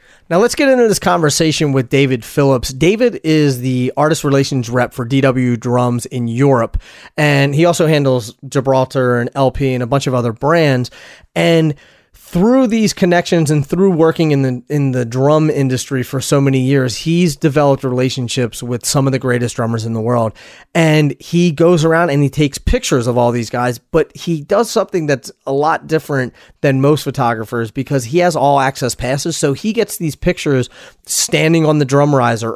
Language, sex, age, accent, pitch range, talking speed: English, male, 30-49, American, 130-165 Hz, 185 wpm